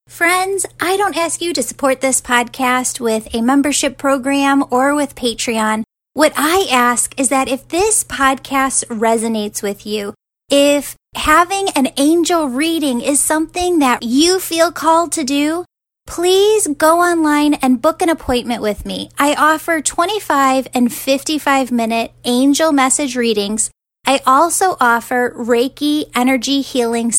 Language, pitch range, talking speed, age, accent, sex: English, 245-310 Hz, 140 wpm, 10-29, American, female